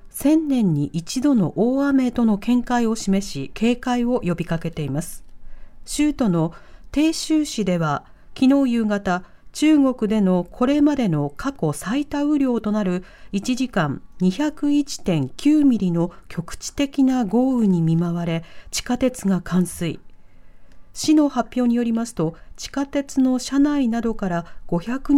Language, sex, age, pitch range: Japanese, female, 40-59, 180-260 Hz